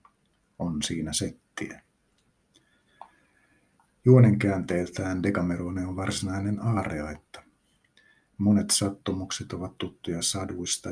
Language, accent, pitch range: Finnish, native, 85-100 Hz